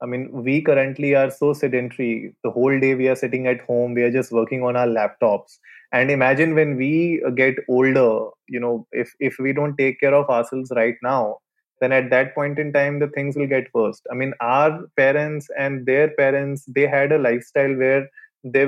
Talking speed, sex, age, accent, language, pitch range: 205 wpm, male, 20-39, Indian, English, 120-145 Hz